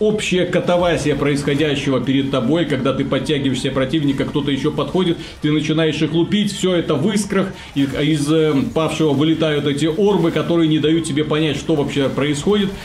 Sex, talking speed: male, 155 wpm